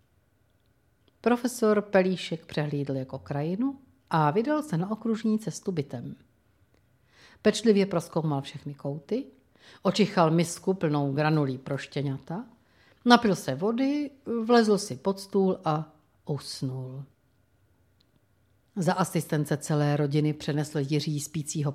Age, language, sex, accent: 50-69, Czech, female, native